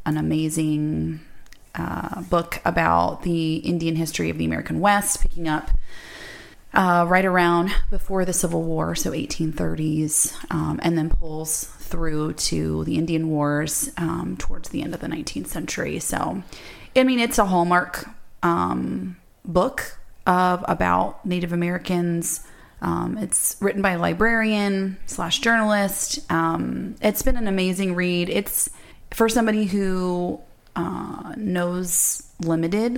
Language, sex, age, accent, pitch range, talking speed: English, female, 30-49, American, 155-190 Hz, 135 wpm